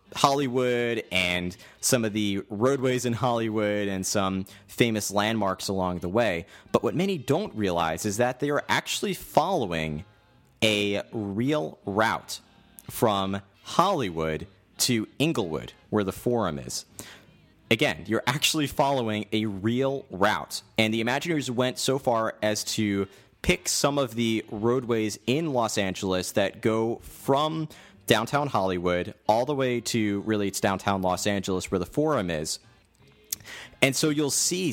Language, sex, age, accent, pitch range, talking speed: English, male, 30-49, American, 100-125 Hz, 140 wpm